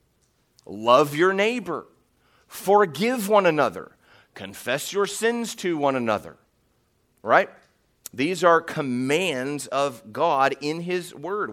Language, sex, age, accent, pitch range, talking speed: English, male, 40-59, American, 115-170 Hz, 110 wpm